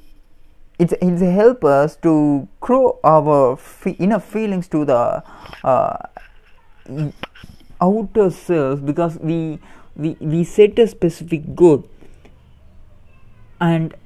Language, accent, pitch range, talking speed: English, Indian, 140-180 Hz, 100 wpm